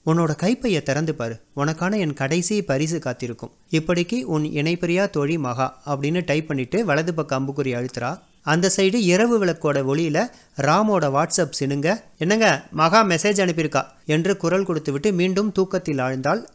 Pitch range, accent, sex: 145-190 Hz, native, male